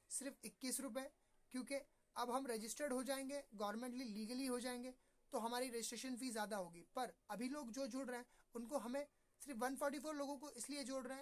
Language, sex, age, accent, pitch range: Hindi, male, 20-39, native, 225-265 Hz